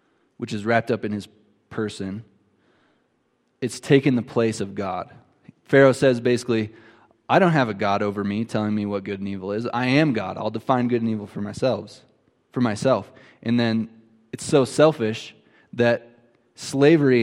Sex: male